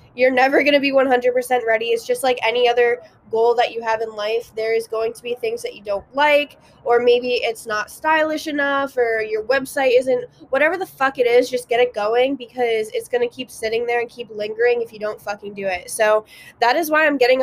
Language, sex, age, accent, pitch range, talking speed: English, female, 20-39, American, 220-260 Hz, 240 wpm